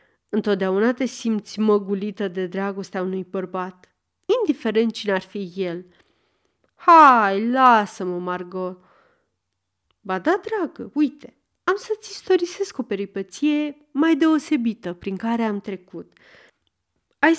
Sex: female